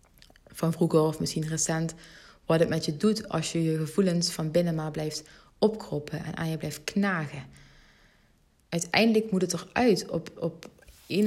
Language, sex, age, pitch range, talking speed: Dutch, female, 30-49, 150-185 Hz, 165 wpm